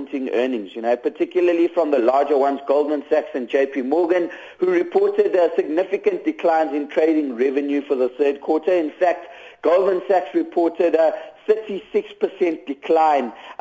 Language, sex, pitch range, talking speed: English, male, 145-175 Hz, 150 wpm